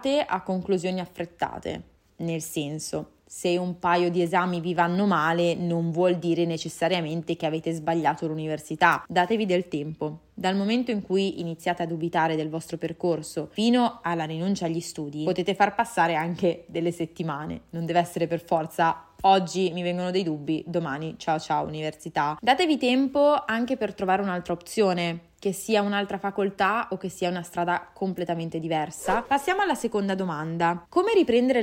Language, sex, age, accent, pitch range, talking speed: Italian, female, 20-39, native, 170-225 Hz, 155 wpm